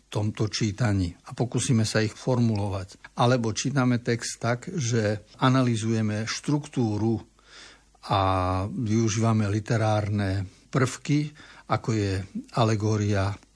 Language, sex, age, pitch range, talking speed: Slovak, male, 60-79, 110-130 Hz, 95 wpm